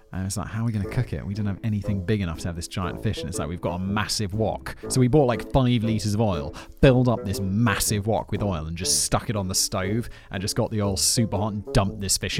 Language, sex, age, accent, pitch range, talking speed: English, male, 30-49, British, 105-140 Hz, 300 wpm